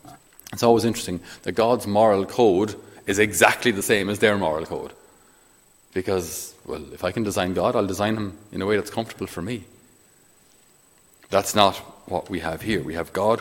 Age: 30-49